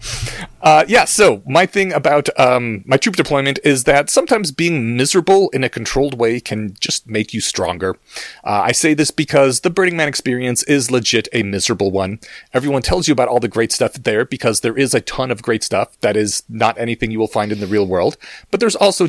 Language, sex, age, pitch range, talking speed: English, male, 30-49, 120-170 Hz, 215 wpm